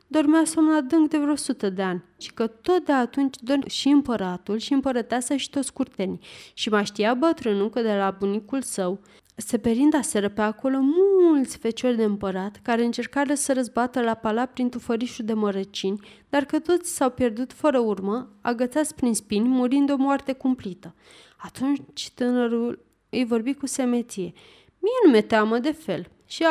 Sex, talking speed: female, 170 wpm